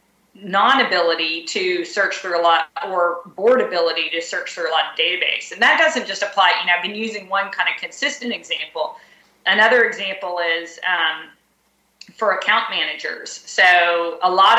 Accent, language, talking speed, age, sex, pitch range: American, English, 170 wpm, 40-59, female, 170-210 Hz